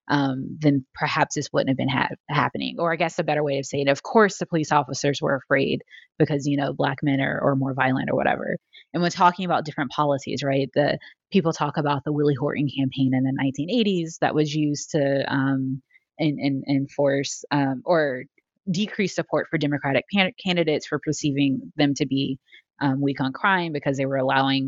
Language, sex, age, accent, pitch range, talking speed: English, female, 20-39, American, 140-170 Hz, 200 wpm